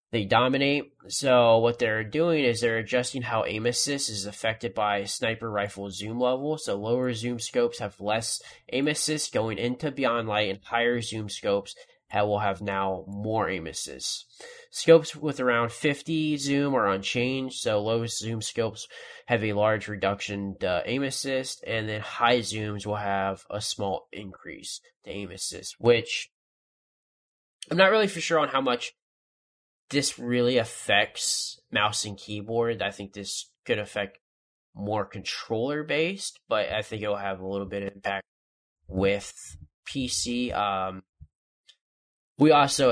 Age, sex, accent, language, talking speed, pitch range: 20-39, male, American, English, 155 wpm, 100-130 Hz